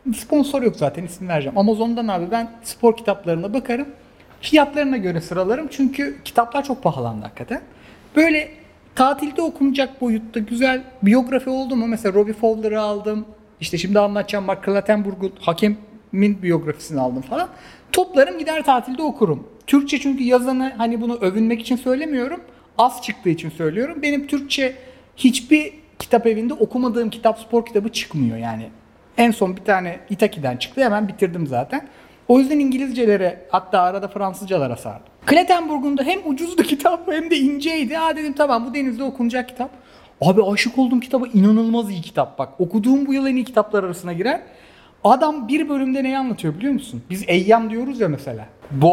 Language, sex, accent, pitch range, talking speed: Turkish, male, native, 195-265 Hz, 155 wpm